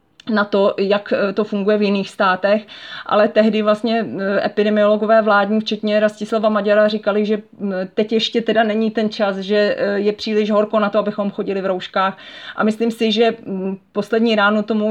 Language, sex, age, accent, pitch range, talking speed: Czech, female, 30-49, native, 185-210 Hz, 165 wpm